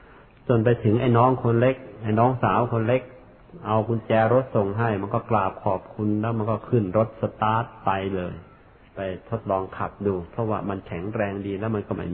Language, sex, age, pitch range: Thai, male, 60-79, 100-120 Hz